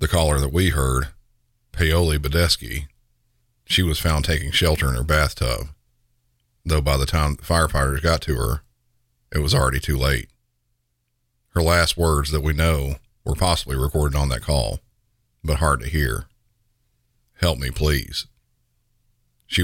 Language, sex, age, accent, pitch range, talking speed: English, male, 50-69, American, 65-85 Hz, 150 wpm